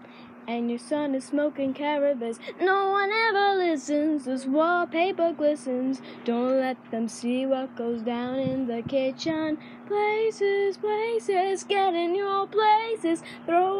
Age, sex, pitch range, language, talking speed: 10-29, female, 270-385 Hz, English, 130 wpm